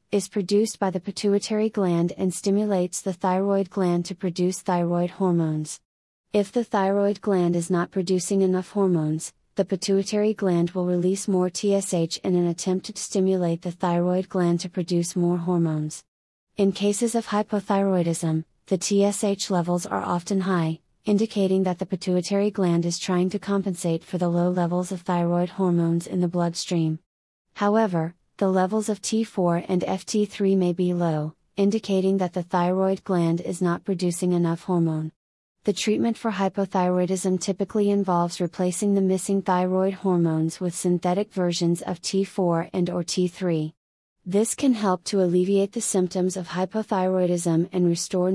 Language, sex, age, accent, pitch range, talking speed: English, female, 30-49, American, 175-195 Hz, 150 wpm